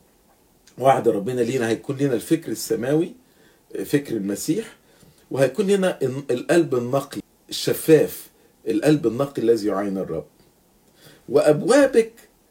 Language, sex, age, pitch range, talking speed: English, male, 50-69, 130-200 Hz, 95 wpm